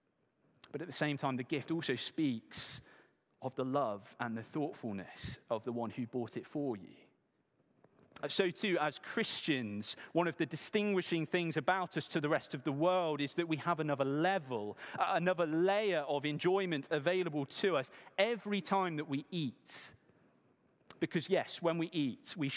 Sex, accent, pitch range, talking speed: male, British, 130-165 Hz, 170 wpm